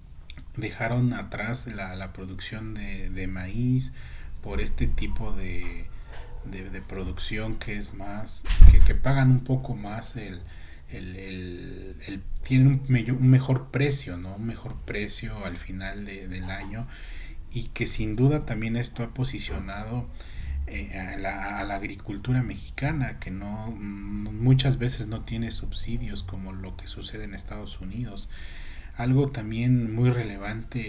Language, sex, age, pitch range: Spanish, male, 40-59, 90-115 Hz